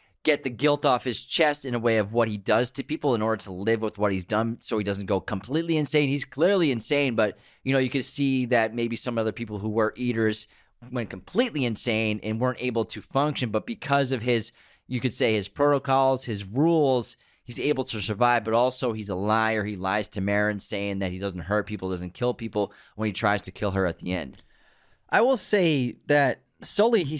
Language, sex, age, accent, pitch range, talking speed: English, male, 30-49, American, 105-135 Hz, 225 wpm